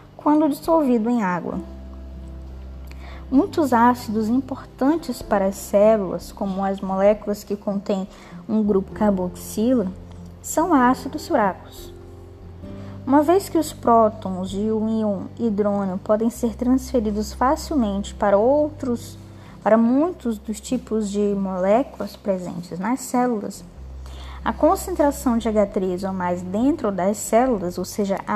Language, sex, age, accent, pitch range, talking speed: Portuguese, female, 10-29, Brazilian, 180-255 Hz, 120 wpm